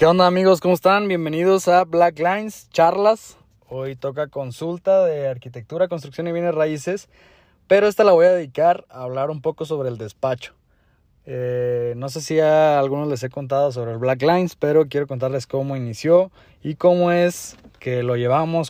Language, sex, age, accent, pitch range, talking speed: Spanish, male, 20-39, Mexican, 125-165 Hz, 180 wpm